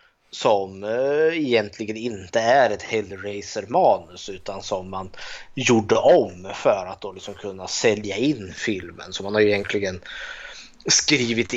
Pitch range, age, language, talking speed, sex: 105-140 Hz, 20-39, Swedish, 130 wpm, male